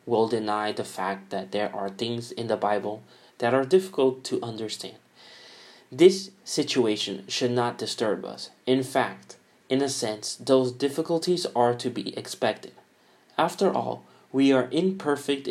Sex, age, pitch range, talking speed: male, 30-49, 110-130 Hz, 145 wpm